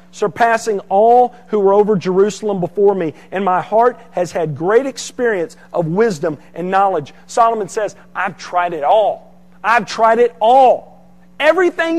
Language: English